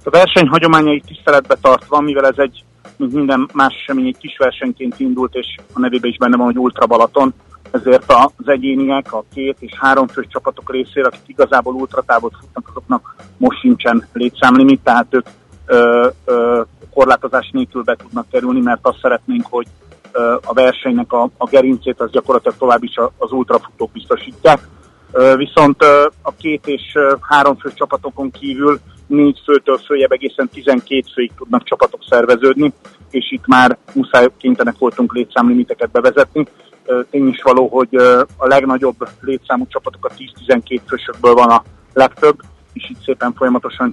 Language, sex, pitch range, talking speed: Hungarian, male, 125-145 Hz, 155 wpm